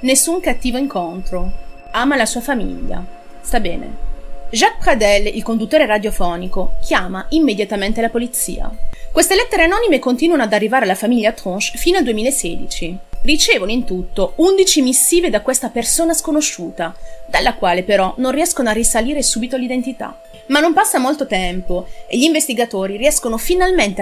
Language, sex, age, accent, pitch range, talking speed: Italian, female, 30-49, native, 200-310 Hz, 145 wpm